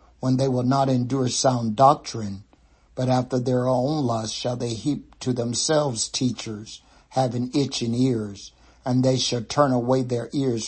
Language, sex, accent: English, male, American